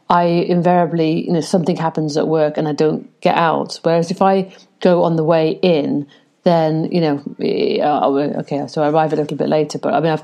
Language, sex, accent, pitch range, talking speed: English, female, British, 155-180 Hz, 210 wpm